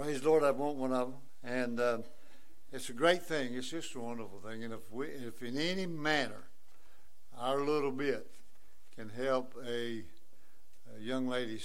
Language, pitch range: English, 110-130 Hz